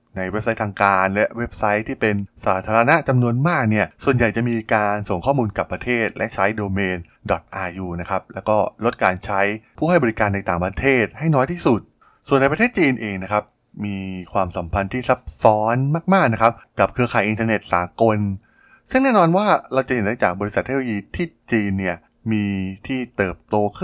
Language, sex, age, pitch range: Thai, male, 20-39, 95-125 Hz